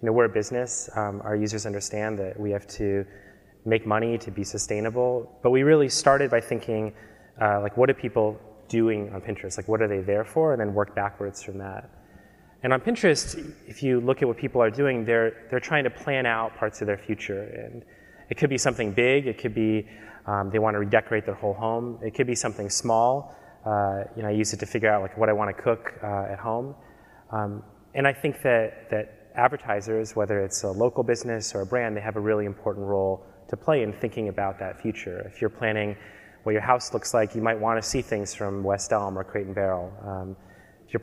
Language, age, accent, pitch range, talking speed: English, 30-49, American, 100-115 Hz, 230 wpm